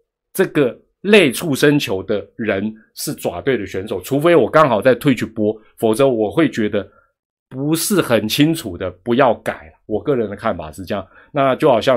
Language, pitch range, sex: Chinese, 105-165 Hz, male